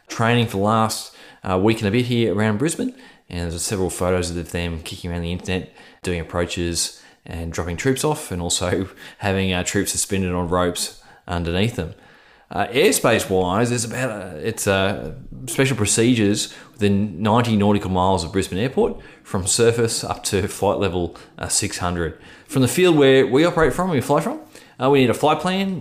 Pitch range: 90-125 Hz